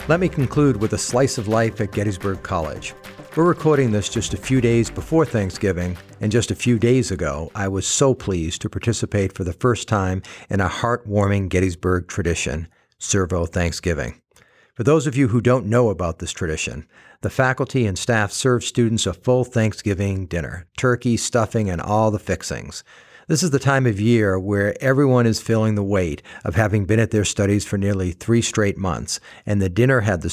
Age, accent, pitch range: 50-69, American, 95-120 Hz